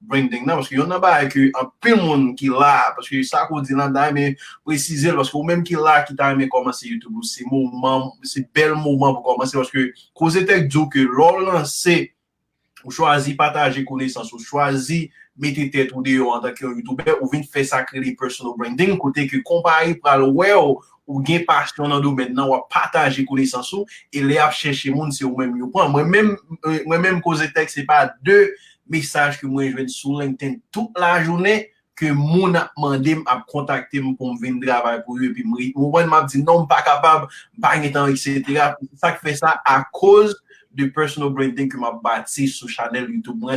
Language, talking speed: French, 200 wpm